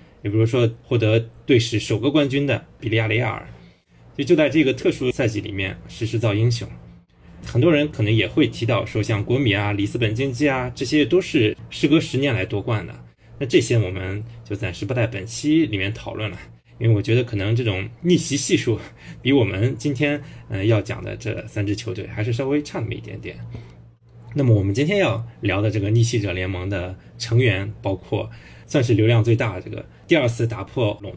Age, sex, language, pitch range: 20-39, male, Chinese, 105-125 Hz